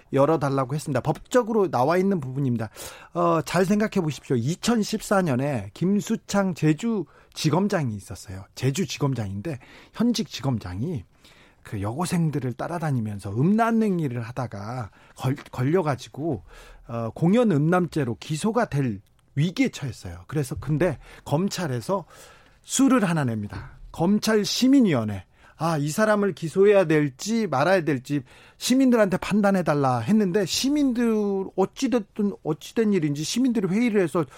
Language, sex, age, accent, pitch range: Korean, male, 40-59, native, 130-195 Hz